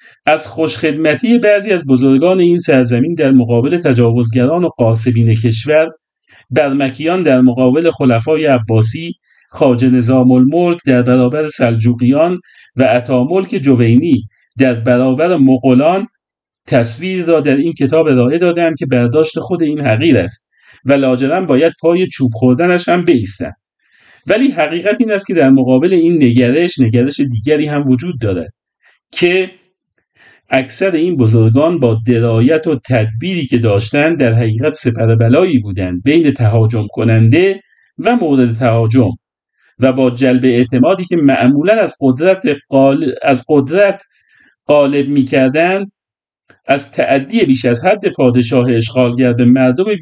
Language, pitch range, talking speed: Persian, 125-165 Hz, 130 wpm